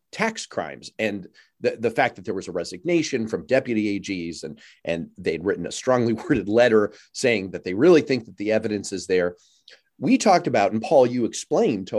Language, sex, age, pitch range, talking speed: English, male, 40-59, 105-145 Hz, 200 wpm